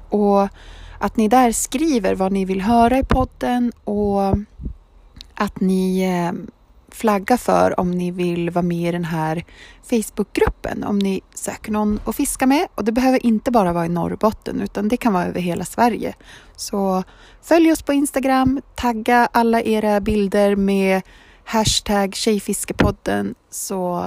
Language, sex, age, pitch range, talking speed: Swedish, female, 30-49, 195-245 Hz, 150 wpm